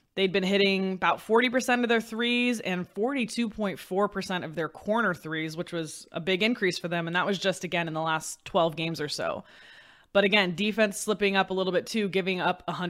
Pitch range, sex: 170-215 Hz, female